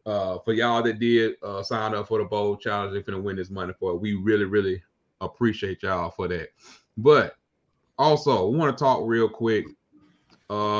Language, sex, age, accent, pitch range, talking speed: English, male, 30-49, American, 100-115 Hz, 195 wpm